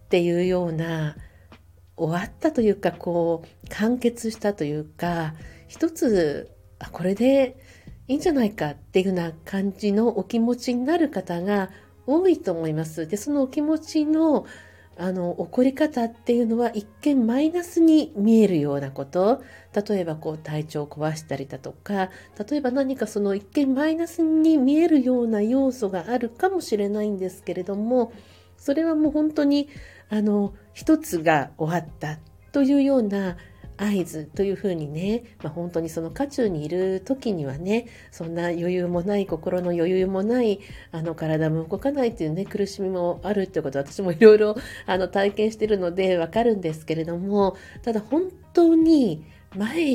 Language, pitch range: Japanese, 165-245 Hz